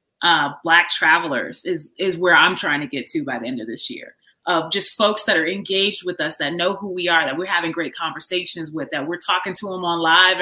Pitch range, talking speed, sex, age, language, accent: 165-200 Hz, 255 wpm, female, 30-49, English, American